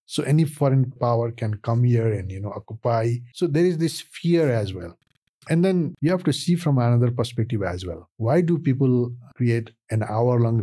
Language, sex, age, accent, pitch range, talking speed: English, male, 50-69, Indian, 110-140 Hz, 200 wpm